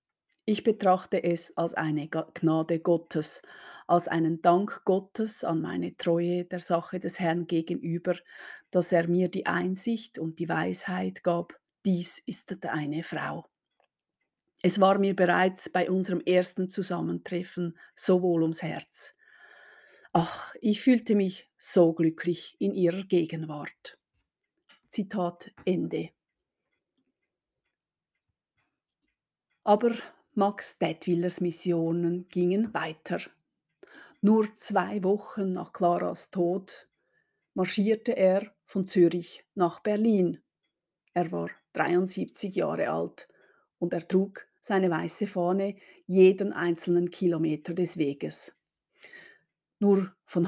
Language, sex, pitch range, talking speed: German, female, 170-195 Hz, 110 wpm